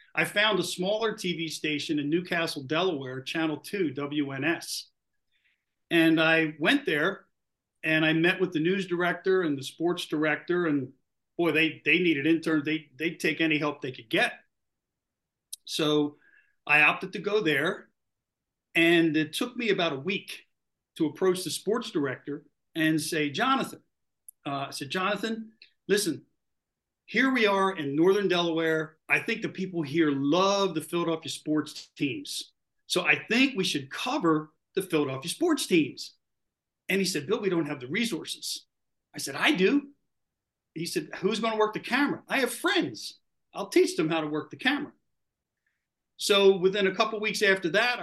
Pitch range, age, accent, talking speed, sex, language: 150-195 Hz, 50-69, American, 165 wpm, male, English